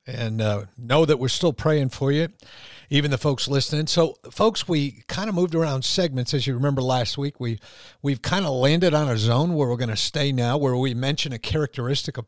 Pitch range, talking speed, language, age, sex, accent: 115-140 Hz, 220 wpm, English, 50-69, male, American